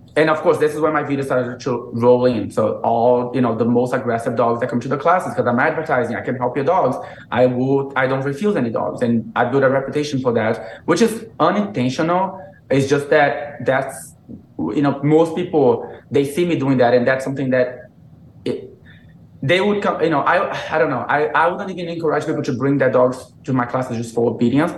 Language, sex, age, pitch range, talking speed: English, male, 20-39, 120-150 Hz, 225 wpm